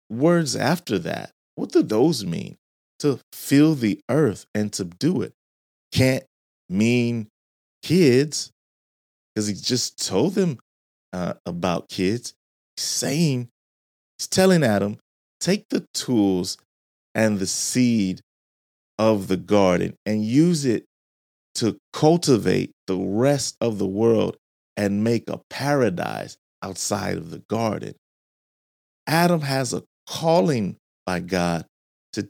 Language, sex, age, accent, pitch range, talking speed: English, male, 30-49, American, 90-135 Hz, 120 wpm